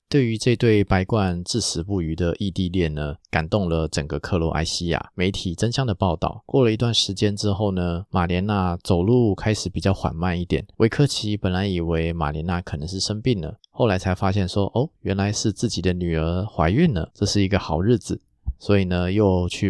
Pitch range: 85-105 Hz